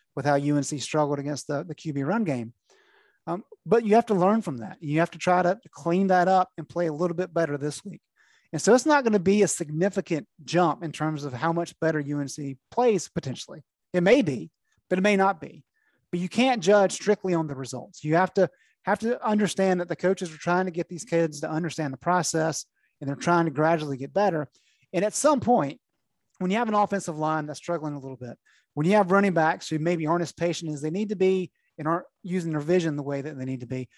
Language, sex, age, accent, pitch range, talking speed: English, male, 30-49, American, 155-195 Hz, 240 wpm